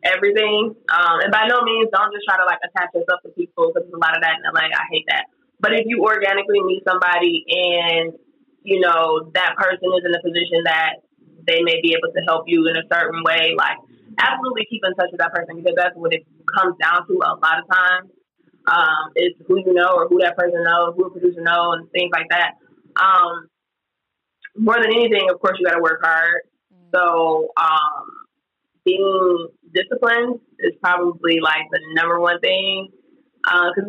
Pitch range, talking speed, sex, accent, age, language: 165-215 Hz, 200 wpm, female, American, 20-39, English